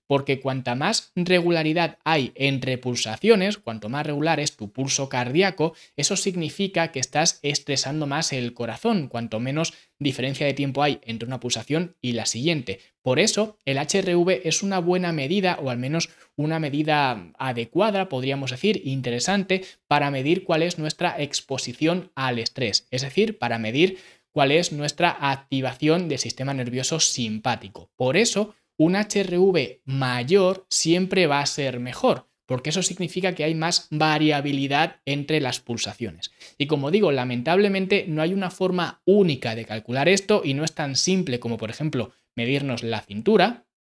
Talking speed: 155 wpm